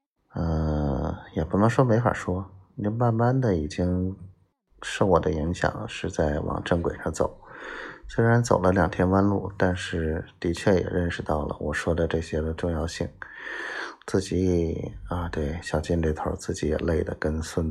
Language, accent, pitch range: Chinese, native, 80-95 Hz